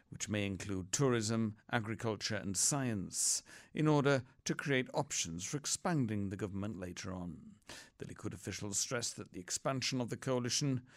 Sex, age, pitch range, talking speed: male, 60-79, 105-135 Hz, 155 wpm